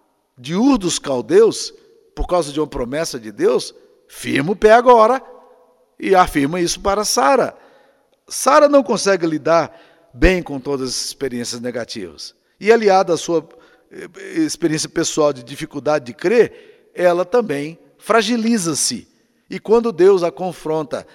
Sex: male